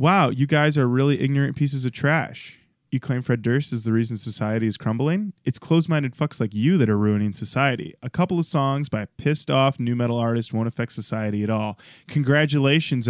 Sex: male